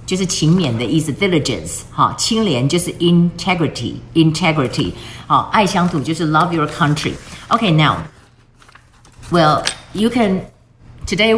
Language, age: Chinese, 50-69